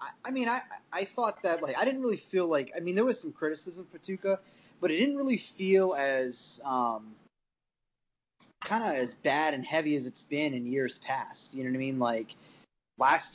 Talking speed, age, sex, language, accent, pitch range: 205 wpm, 30-49, male, English, American, 135-180 Hz